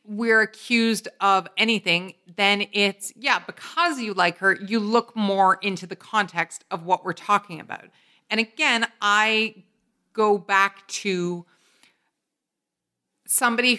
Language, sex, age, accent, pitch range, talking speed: English, female, 40-59, American, 185-230 Hz, 125 wpm